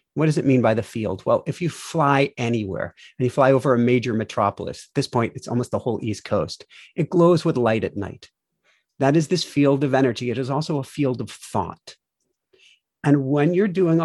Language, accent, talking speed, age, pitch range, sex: English, American, 220 wpm, 40-59, 125-160 Hz, male